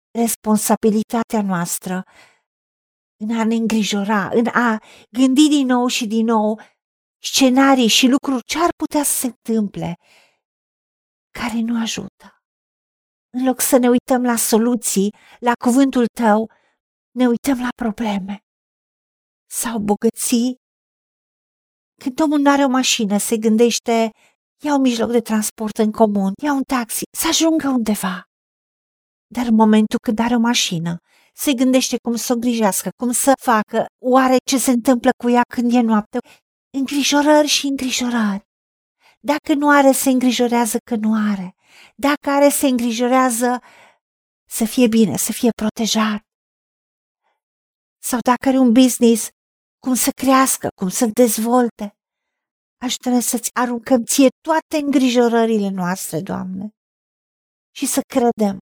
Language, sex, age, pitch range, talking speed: Romanian, female, 50-69, 220-265 Hz, 135 wpm